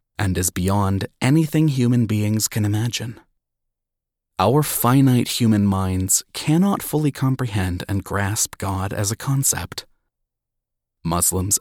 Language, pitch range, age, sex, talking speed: English, 95-125 Hz, 30-49, male, 115 wpm